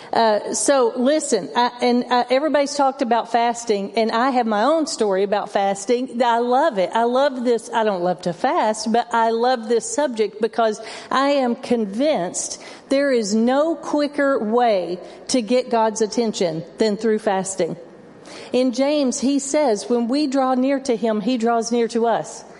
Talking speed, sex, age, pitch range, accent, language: 165 wpm, female, 50-69, 215-260 Hz, American, English